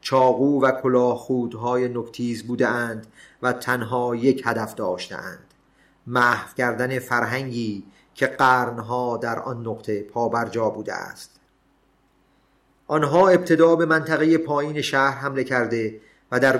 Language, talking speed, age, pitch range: Persian, 125 wpm, 40-59, 125-140 Hz